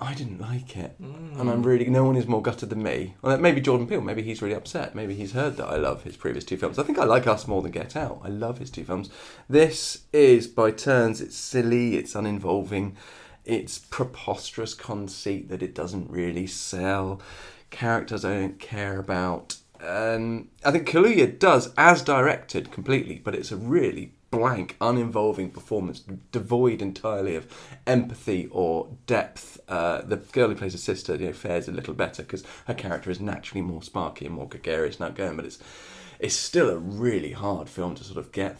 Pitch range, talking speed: 95-125 Hz, 195 wpm